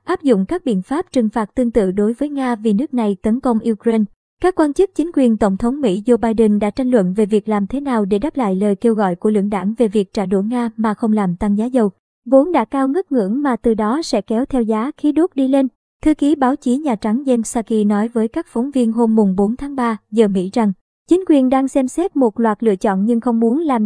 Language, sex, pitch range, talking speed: Vietnamese, male, 220-270 Hz, 265 wpm